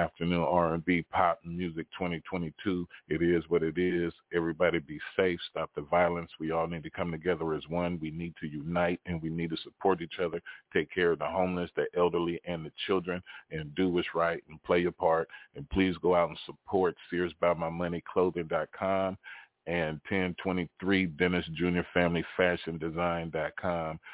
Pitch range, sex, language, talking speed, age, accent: 85-95 Hz, male, English, 155 wpm, 40-59, American